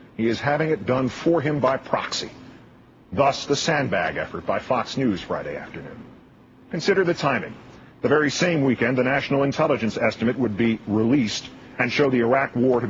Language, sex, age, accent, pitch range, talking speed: English, male, 50-69, American, 105-140 Hz, 175 wpm